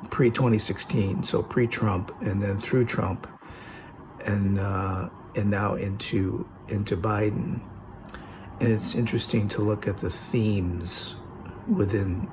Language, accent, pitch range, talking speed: English, American, 95-115 Hz, 125 wpm